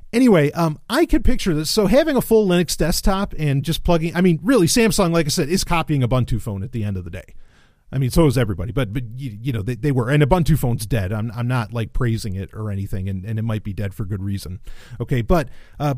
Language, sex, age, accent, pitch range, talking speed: English, male, 30-49, American, 120-180 Hz, 255 wpm